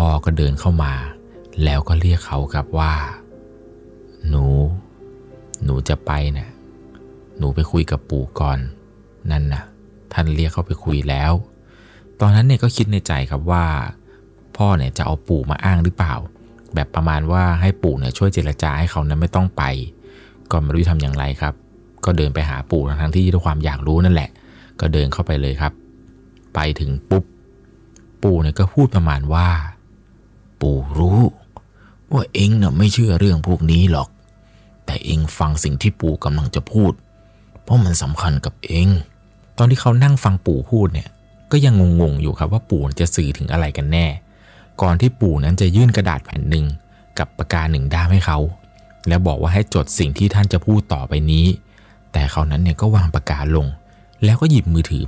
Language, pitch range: Thai, 75-95 Hz